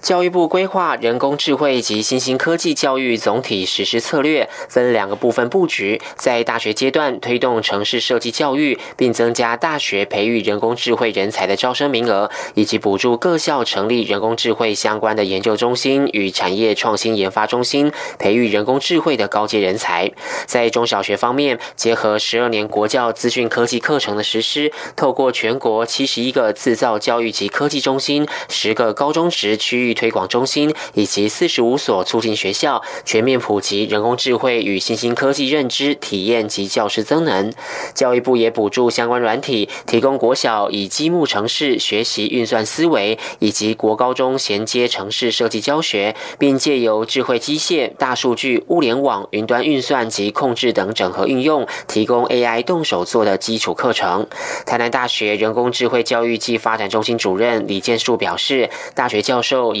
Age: 20-39